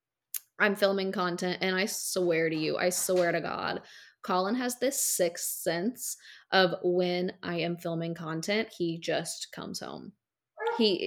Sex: female